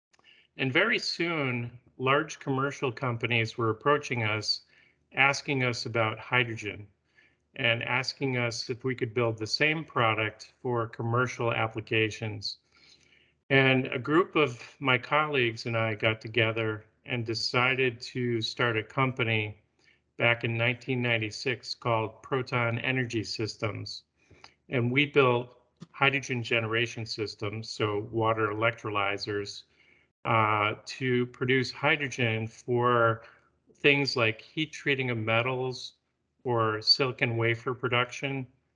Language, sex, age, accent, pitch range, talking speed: English, male, 40-59, American, 115-130 Hz, 115 wpm